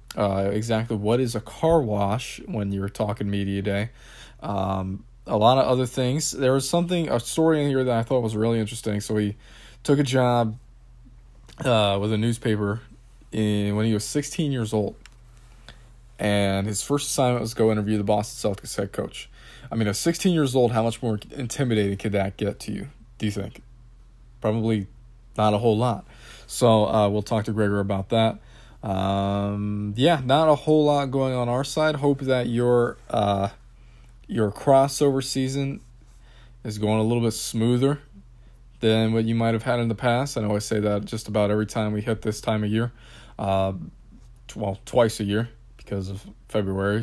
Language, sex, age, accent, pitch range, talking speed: English, male, 20-39, American, 105-120 Hz, 185 wpm